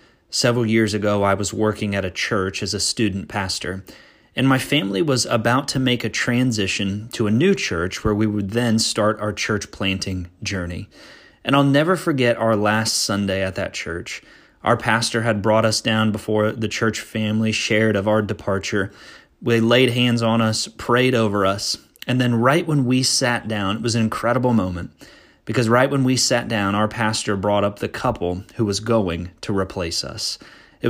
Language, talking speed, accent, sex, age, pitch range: English, 190 wpm, American, male, 30-49, 105-120 Hz